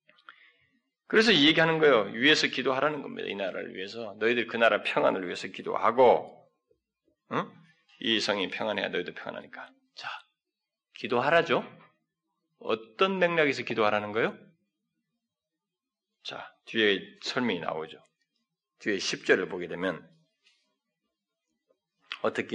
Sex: male